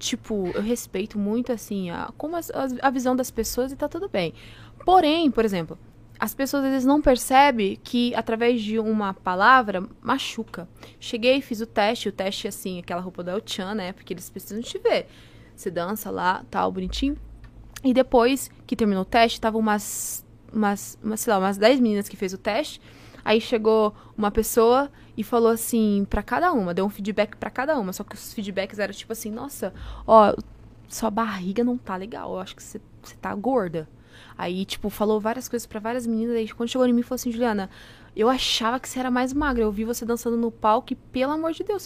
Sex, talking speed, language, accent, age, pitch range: female, 205 wpm, Portuguese, Brazilian, 20-39, 200-250 Hz